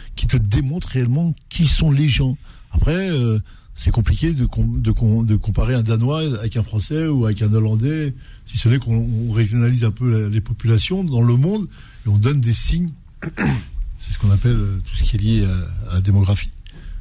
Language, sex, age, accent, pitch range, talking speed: French, male, 60-79, French, 110-150 Hz, 200 wpm